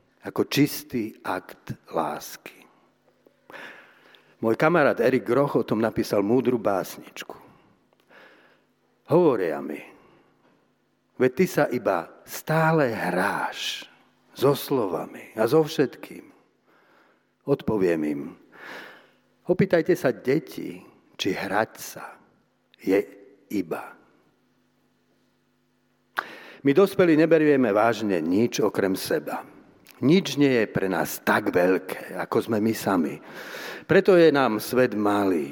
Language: Slovak